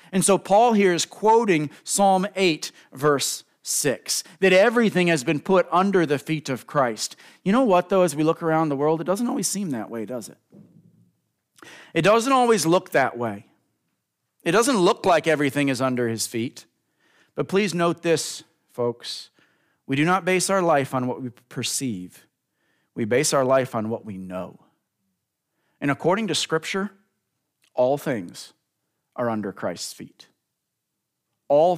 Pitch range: 120-175 Hz